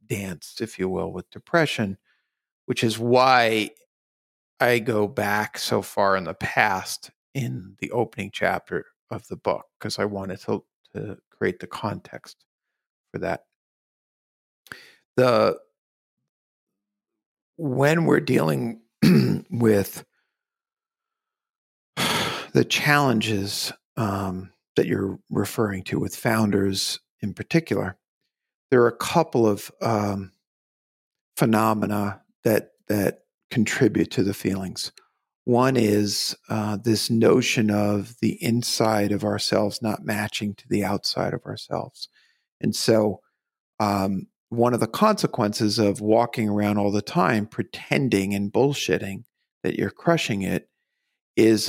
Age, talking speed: 50-69, 115 wpm